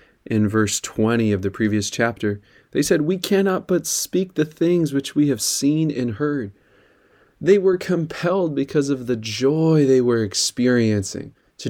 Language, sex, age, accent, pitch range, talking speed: English, male, 20-39, American, 100-135 Hz, 165 wpm